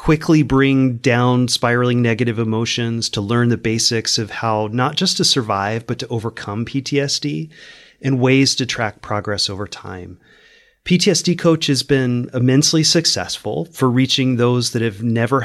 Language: English